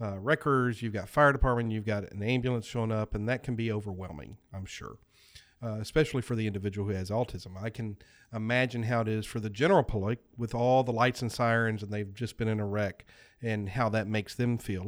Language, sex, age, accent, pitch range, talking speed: English, male, 40-59, American, 105-125 Hz, 225 wpm